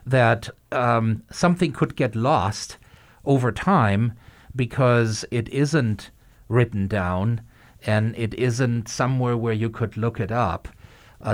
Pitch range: 110-135 Hz